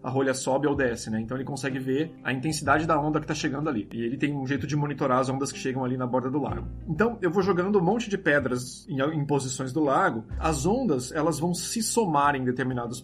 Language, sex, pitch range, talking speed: Portuguese, male, 130-170 Hz, 250 wpm